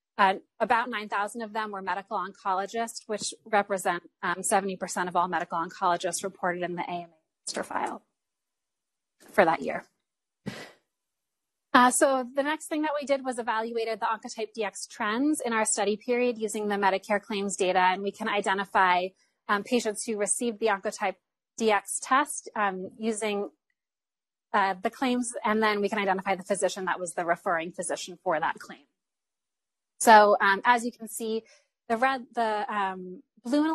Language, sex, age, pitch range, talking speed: English, female, 30-49, 190-225 Hz, 160 wpm